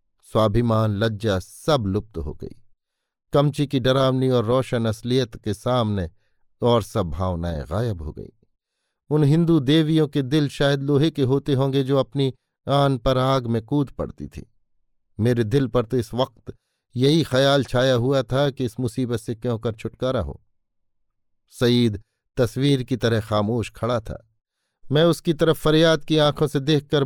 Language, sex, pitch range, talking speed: Hindi, male, 110-140 Hz, 160 wpm